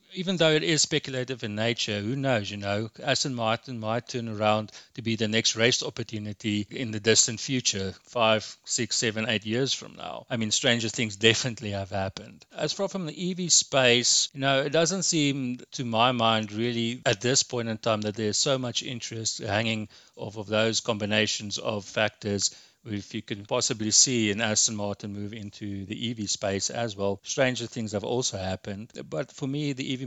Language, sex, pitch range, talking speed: English, male, 105-120 Hz, 195 wpm